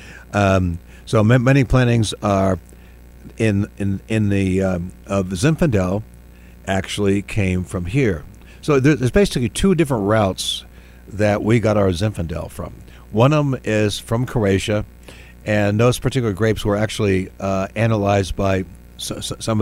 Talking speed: 130 wpm